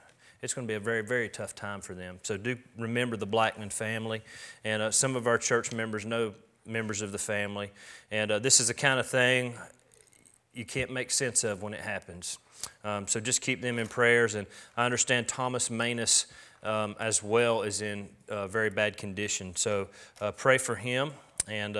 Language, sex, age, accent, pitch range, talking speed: English, male, 30-49, American, 105-125 Hz, 200 wpm